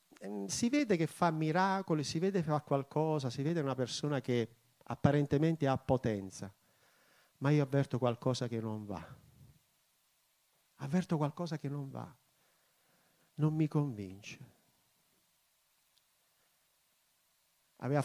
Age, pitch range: 50-69, 125-170 Hz